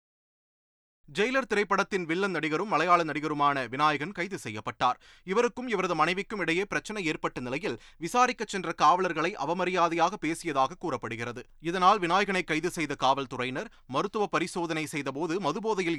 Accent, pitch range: native, 135-195 Hz